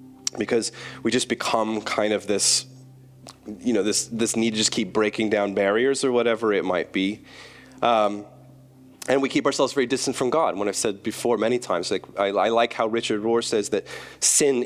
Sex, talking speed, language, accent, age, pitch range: male, 195 wpm, English, American, 30-49, 100-130 Hz